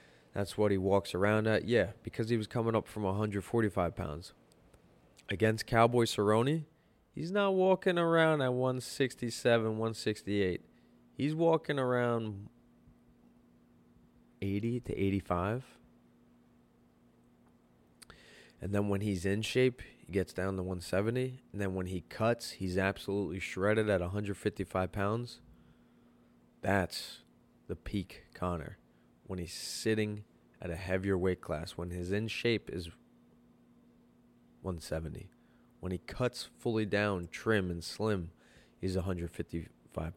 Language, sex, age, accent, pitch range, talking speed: English, male, 20-39, American, 75-105 Hz, 120 wpm